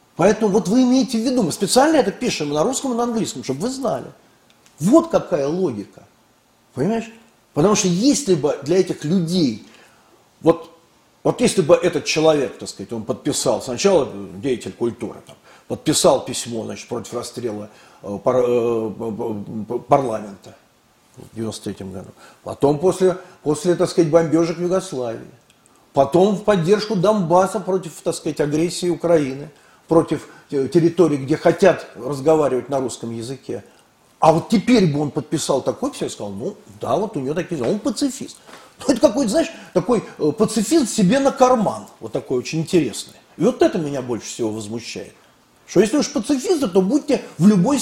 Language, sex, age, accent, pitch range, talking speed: Russian, male, 40-59, native, 130-205 Hz, 160 wpm